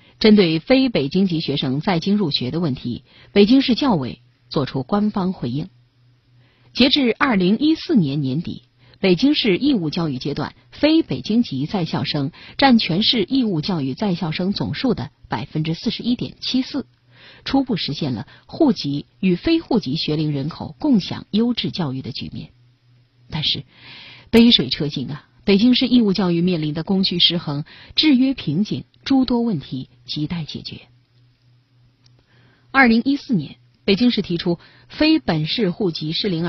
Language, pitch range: Chinese, 130-210 Hz